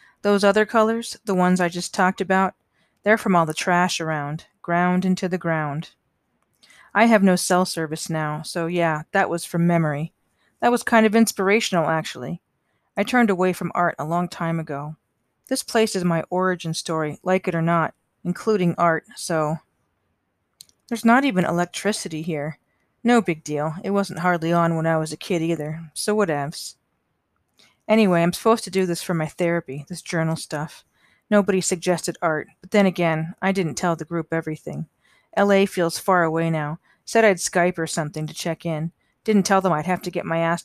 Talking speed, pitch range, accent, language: 185 wpm, 165-195 Hz, American, English